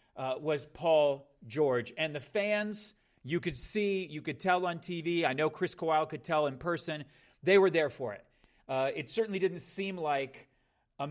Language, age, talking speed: English, 40-59, 190 wpm